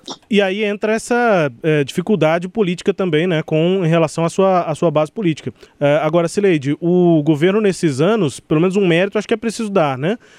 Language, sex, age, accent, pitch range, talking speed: Portuguese, male, 20-39, Brazilian, 150-195 Hz, 200 wpm